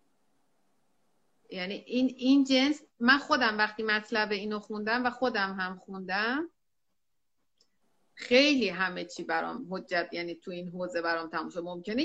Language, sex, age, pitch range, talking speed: Persian, female, 30-49, 200-250 Hz, 130 wpm